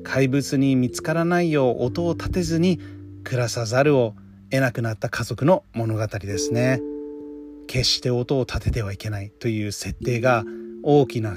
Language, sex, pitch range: Japanese, male, 115-145 Hz